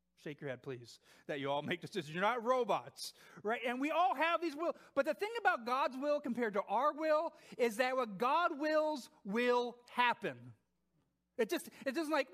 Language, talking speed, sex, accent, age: English, 200 wpm, male, American, 40-59